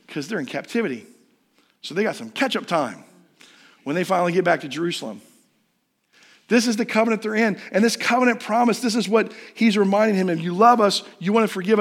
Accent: American